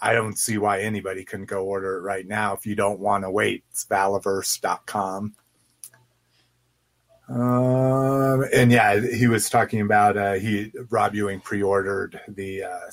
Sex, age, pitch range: male, 30-49, 100-125 Hz